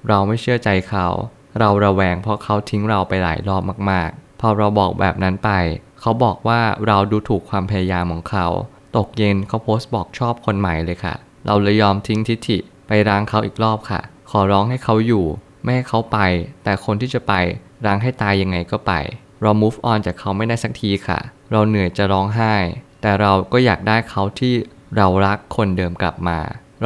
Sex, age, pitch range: male, 20-39, 95-115 Hz